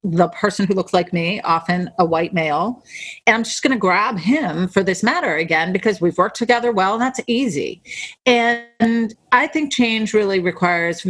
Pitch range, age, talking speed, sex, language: 170-225 Hz, 40-59, 185 wpm, female, English